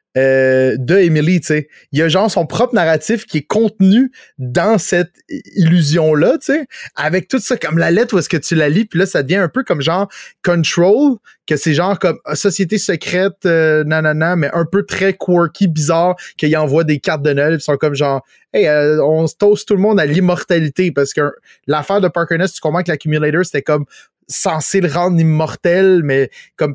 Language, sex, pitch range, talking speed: French, male, 145-180 Hz, 205 wpm